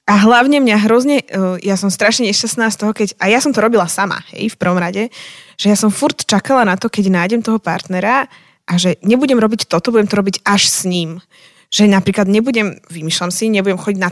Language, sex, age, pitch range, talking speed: Slovak, female, 20-39, 180-220 Hz, 215 wpm